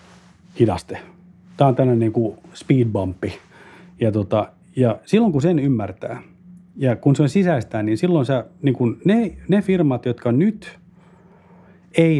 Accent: native